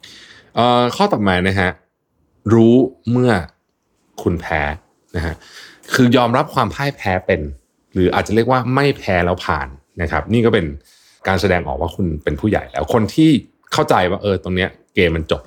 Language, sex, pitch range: Thai, male, 85-120 Hz